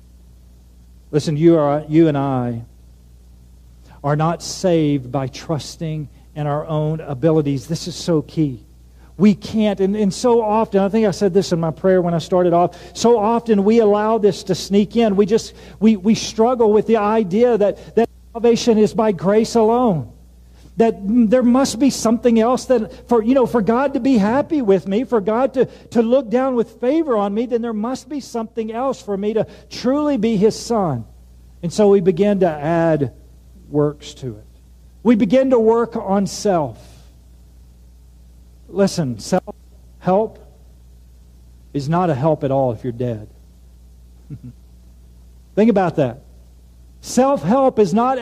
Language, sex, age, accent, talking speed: English, male, 50-69, American, 165 wpm